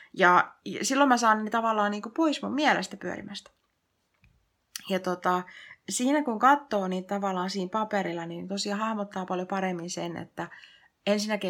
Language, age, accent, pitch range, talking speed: Finnish, 30-49, native, 170-200 Hz, 150 wpm